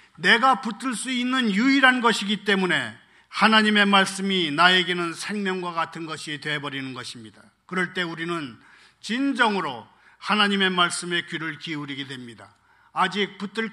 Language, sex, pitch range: Korean, male, 185-235 Hz